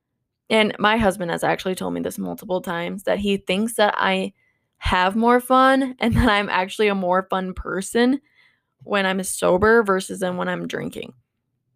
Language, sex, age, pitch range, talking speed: English, female, 20-39, 180-210 Hz, 175 wpm